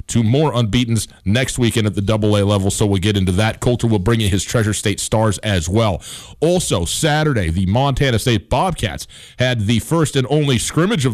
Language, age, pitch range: English, 30-49, 100-125 Hz